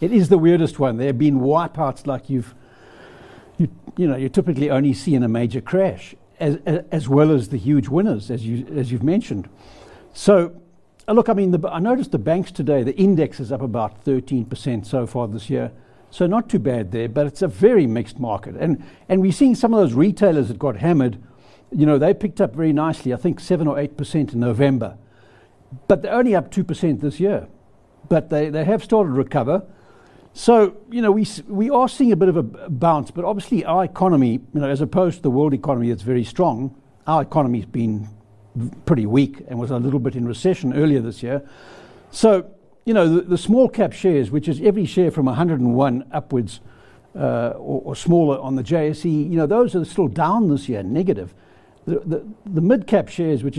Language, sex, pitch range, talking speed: English, male, 130-185 Hz, 210 wpm